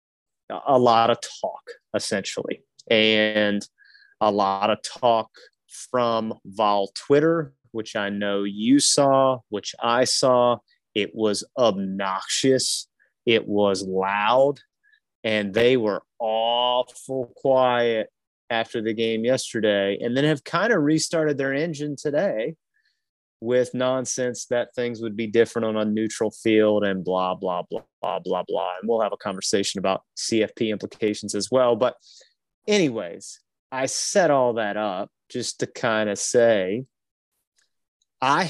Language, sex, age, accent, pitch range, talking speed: English, male, 30-49, American, 105-130 Hz, 135 wpm